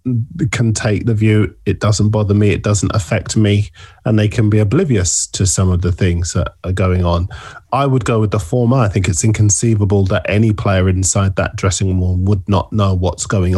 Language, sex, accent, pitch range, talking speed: English, male, British, 95-110 Hz, 210 wpm